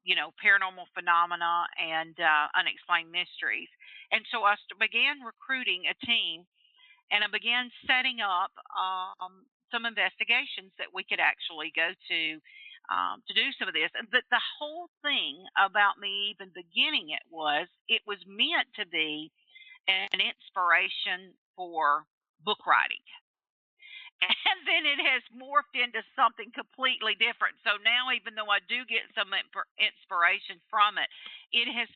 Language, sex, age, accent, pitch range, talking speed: English, female, 50-69, American, 180-245 Hz, 145 wpm